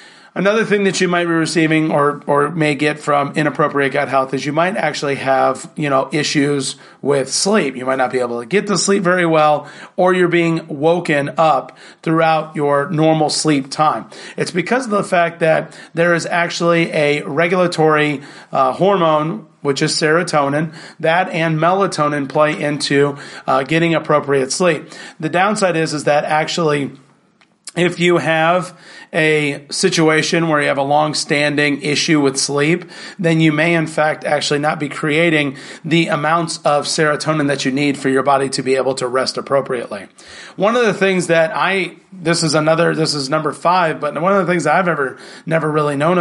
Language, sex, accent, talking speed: English, male, American, 180 wpm